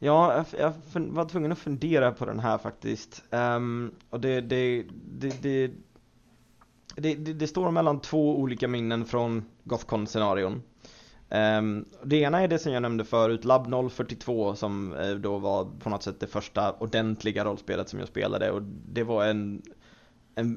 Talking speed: 155 wpm